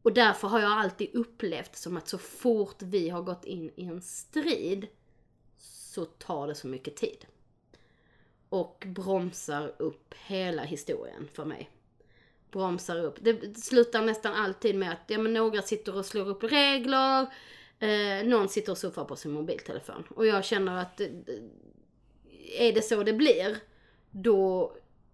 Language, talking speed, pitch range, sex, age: Swedish, 155 wpm, 175-225 Hz, female, 30-49